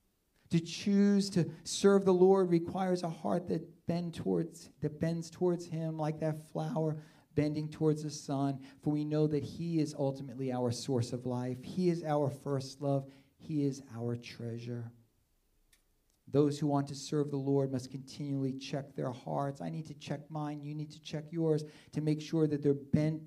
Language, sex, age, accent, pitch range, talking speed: English, male, 40-59, American, 110-150 Hz, 180 wpm